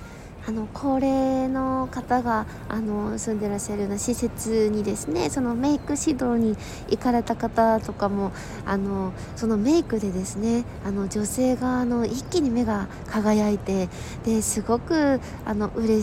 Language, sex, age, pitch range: Japanese, female, 20-39, 205-250 Hz